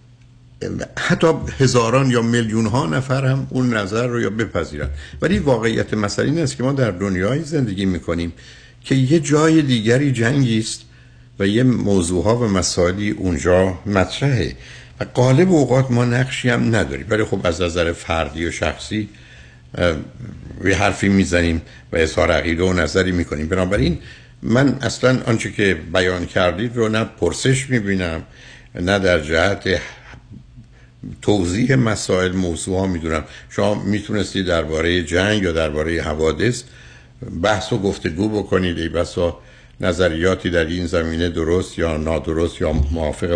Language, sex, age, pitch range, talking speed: Persian, male, 60-79, 85-120 Hz, 145 wpm